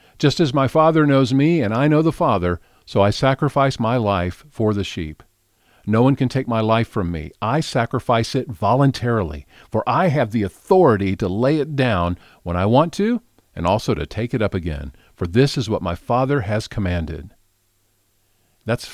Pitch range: 95-130 Hz